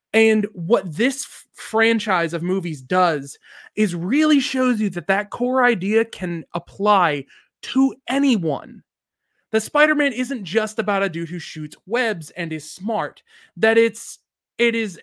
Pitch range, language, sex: 175-230 Hz, English, male